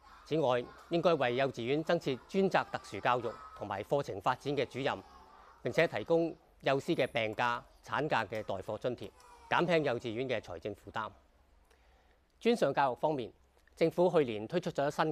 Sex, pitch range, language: male, 95-155 Hz, Chinese